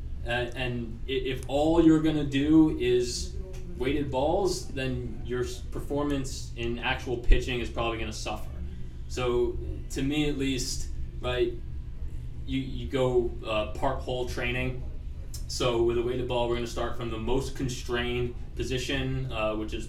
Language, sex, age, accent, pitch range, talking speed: English, male, 20-39, American, 105-130 Hz, 155 wpm